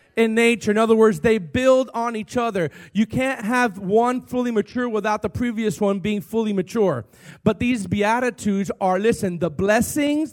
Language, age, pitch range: English, 40-59, 210-265 Hz